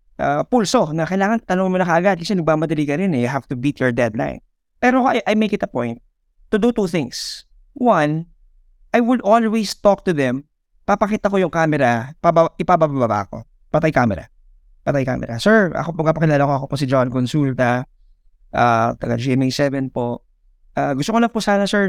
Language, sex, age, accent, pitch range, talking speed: English, male, 20-39, Filipino, 130-195 Hz, 170 wpm